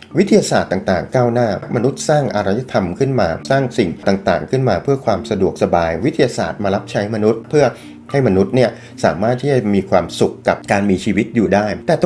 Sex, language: male, Thai